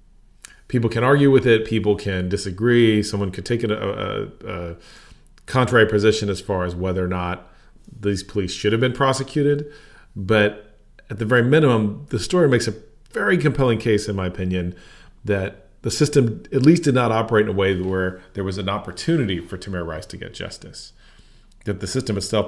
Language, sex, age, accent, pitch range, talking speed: English, male, 40-59, American, 95-115 Hz, 185 wpm